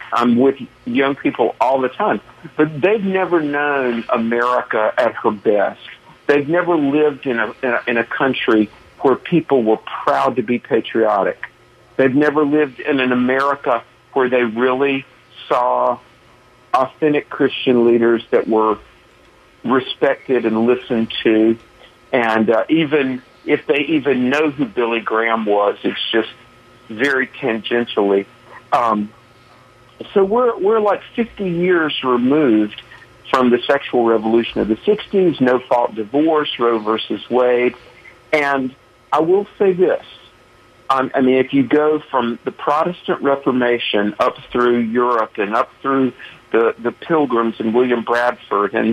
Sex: male